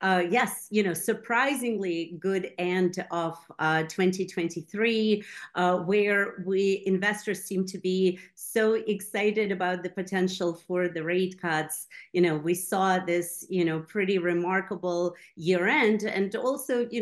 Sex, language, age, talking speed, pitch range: female, English, 40-59, 140 wpm, 170-205 Hz